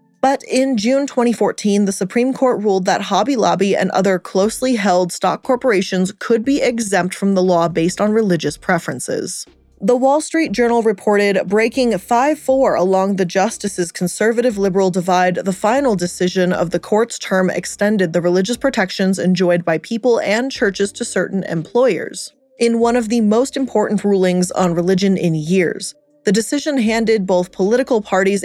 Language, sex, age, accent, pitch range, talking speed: English, female, 20-39, American, 180-235 Hz, 160 wpm